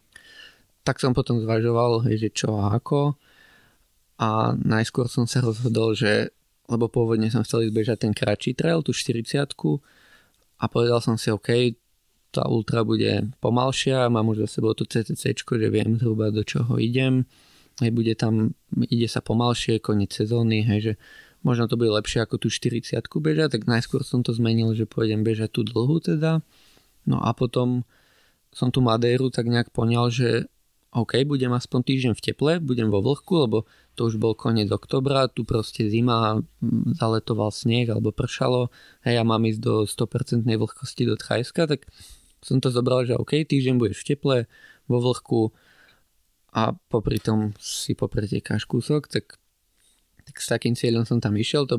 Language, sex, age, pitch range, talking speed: Slovak, male, 20-39, 110-130 Hz, 165 wpm